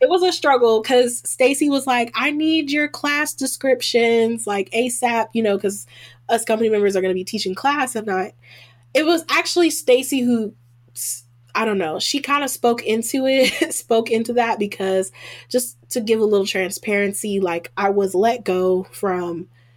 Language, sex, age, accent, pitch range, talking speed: English, female, 10-29, American, 180-235 Hz, 180 wpm